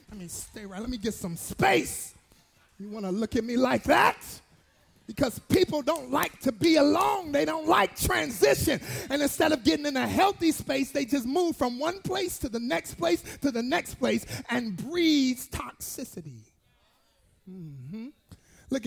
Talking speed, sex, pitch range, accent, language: 180 wpm, male, 225-275 Hz, American, English